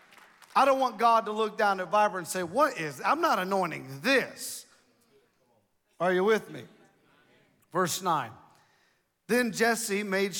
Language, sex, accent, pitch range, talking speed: English, male, American, 180-225 Hz, 150 wpm